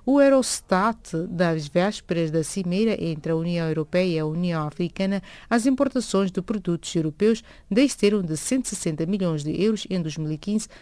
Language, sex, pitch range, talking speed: English, female, 160-220 Hz, 150 wpm